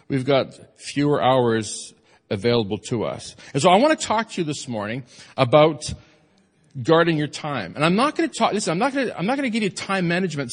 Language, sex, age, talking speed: English, male, 40-59, 235 wpm